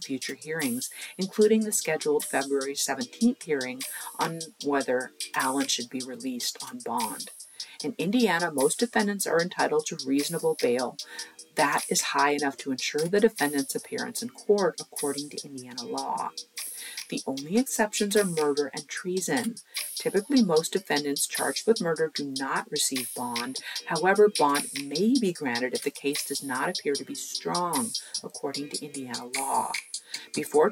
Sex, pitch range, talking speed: female, 140-210 Hz, 150 wpm